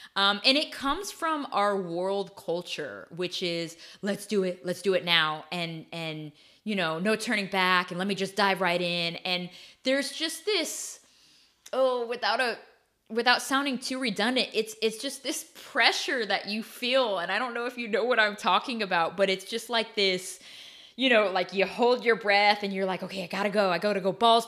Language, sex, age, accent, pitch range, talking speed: English, female, 20-39, American, 175-240 Hz, 210 wpm